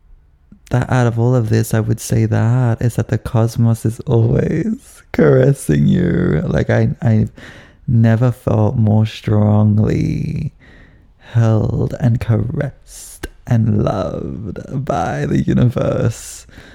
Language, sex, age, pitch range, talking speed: English, male, 20-39, 105-120 Hz, 120 wpm